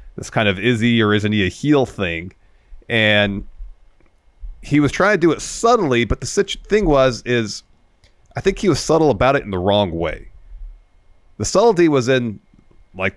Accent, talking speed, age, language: American, 185 wpm, 30-49, English